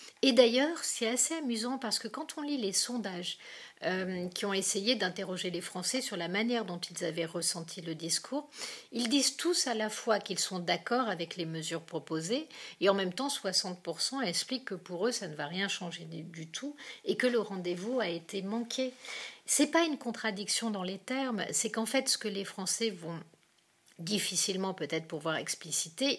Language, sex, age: French, female, 50-69